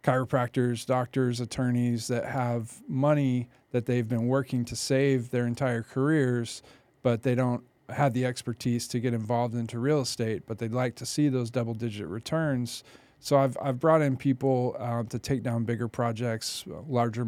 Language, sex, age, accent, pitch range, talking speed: English, male, 40-59, American, 115-130 Hz, 165 wpm